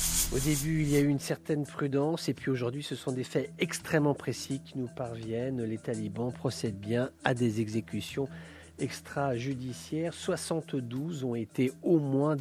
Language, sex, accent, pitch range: English, male, French, 115-140 Hz